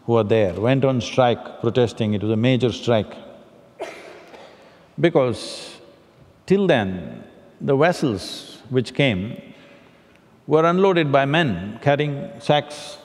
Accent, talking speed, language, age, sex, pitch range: Indian, 115 wpm, English, 60-79, male, 115-150 Hz